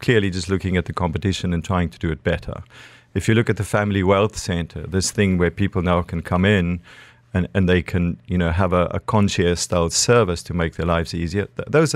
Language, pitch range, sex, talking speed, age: English, 90-105 Hz, male, 230 wpm, 40-59